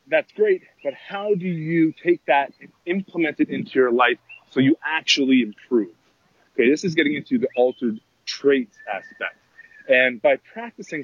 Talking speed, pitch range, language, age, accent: 165 wpm, 130-170 Hz, English, 30-49, American